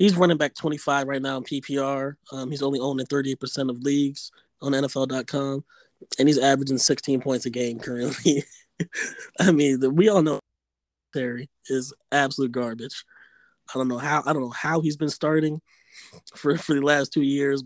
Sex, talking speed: male, 185 wpm